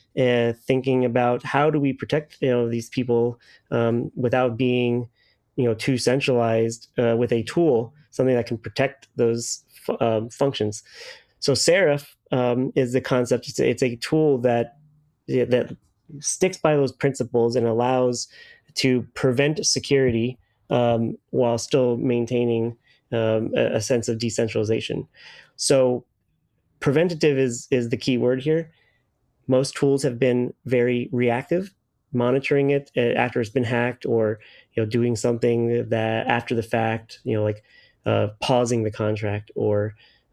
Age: 30-49